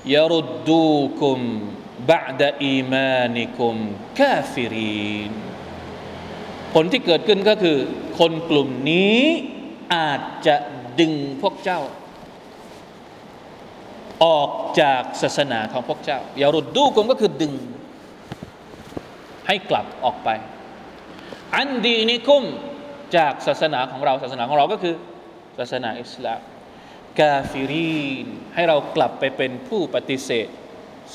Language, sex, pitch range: Thai, male, 145-210 Hz